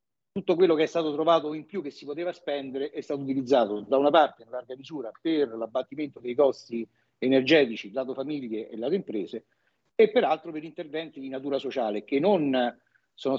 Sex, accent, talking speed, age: male, native, 185 wpm, 50-69